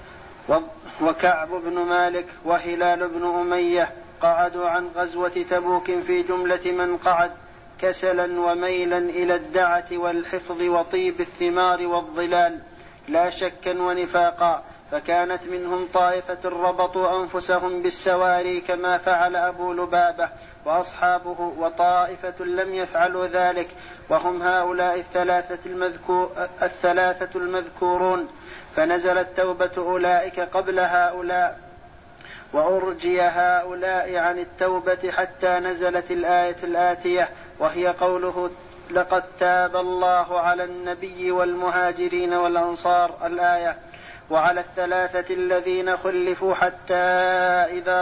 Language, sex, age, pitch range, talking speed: Arabic, male, 40-59, 175-180 Hz, 90 wpm